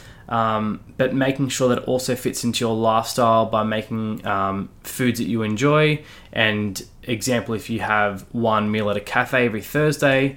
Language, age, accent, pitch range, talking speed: English, 20-39, Australian, 110-130 Hz, 175 wpm